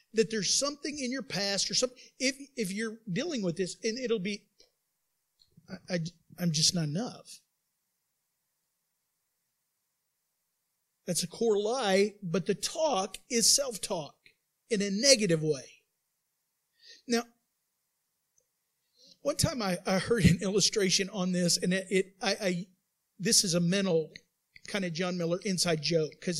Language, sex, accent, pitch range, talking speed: English, male, American, 175-225 Hz, 140 wpm